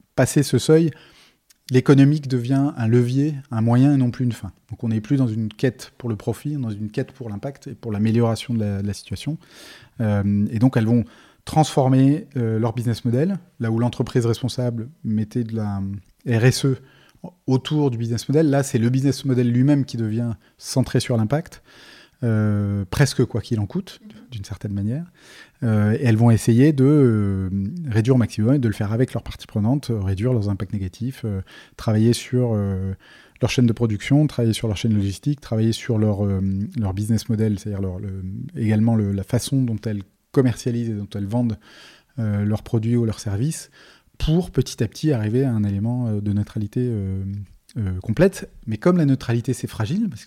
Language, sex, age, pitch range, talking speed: French, male, 20-39, 105-130 Hz, 190 wpm